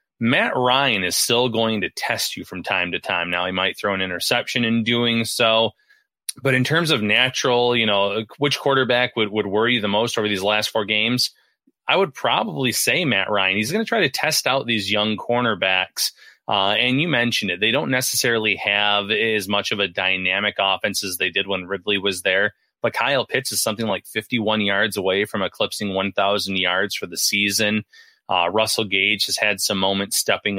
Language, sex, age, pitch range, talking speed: English, male, 30-49, 100-120 Hz, 200 wpm